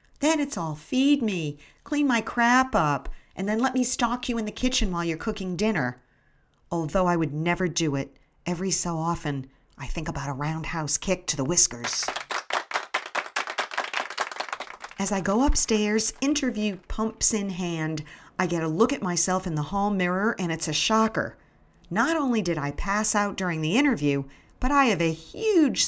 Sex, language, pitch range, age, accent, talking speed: female, English, 160-225 Hz, 40-59, American, 175 wpm